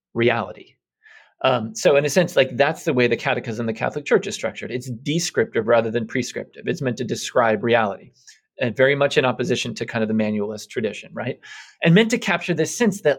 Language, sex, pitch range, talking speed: English, male, 120-150 Hz, 210 wpm